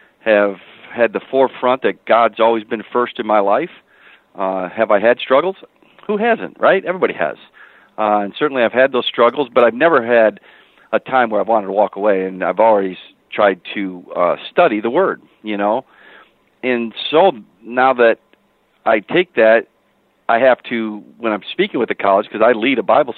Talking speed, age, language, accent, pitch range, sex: 190 wpm, 50-69, English, American, 105-120 Hz, male